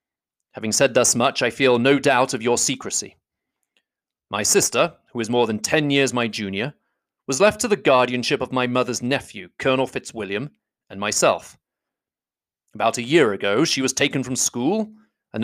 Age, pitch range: 30-49, 120-165 Hz